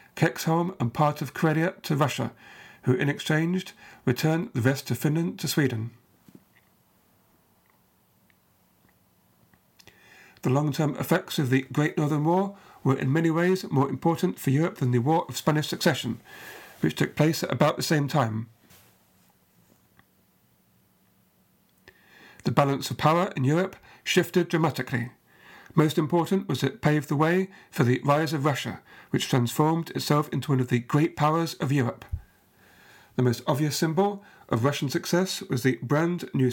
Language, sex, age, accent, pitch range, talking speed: English, male, 50-69, British, 125-165 Hz, 145 wpm